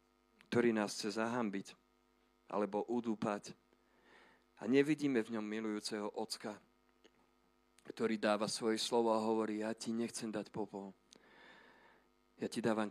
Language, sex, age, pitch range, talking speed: Slovak, male, 40-59, 105-120 Hz, 120 wpm